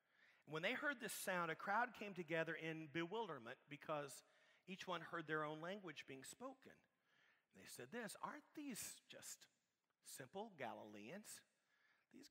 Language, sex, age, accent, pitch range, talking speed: English, male, 40-59, American, 140-180 Hz, 140 wpm